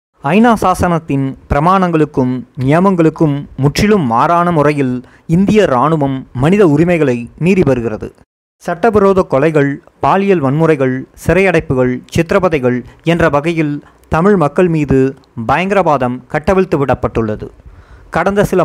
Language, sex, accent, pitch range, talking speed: Tamil, male, native, 130-180 Hz, 95 wpm